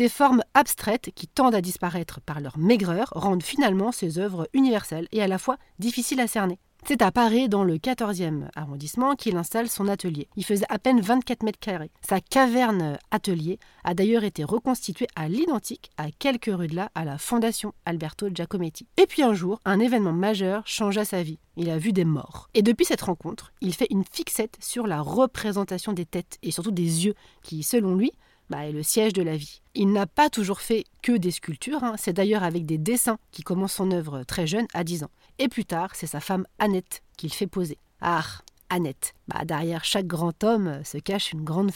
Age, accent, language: 40-59, French, French